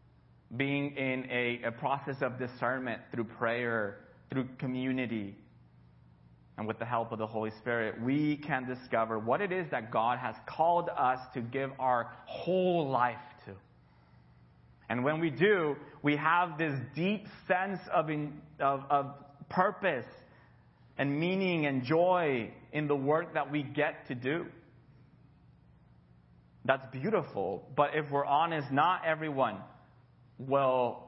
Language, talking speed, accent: English, 135 wpm, American